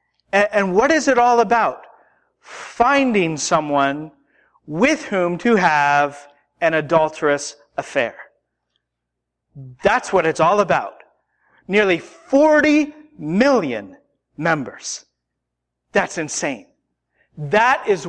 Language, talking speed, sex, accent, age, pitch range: English, 95 wpm, male, American, 40-59, 155-220 Hz